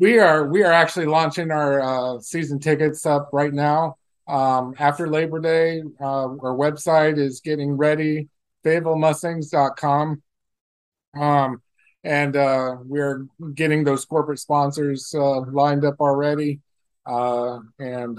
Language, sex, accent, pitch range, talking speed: English, male, American, 130-155 Hz, 130 wpm